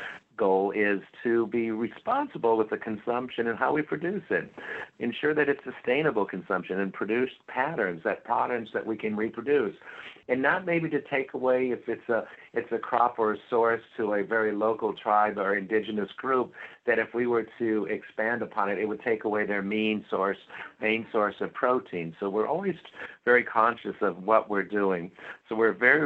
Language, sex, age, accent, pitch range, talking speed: English, male, 50-69, American, 105-120 Hz, 185 wpm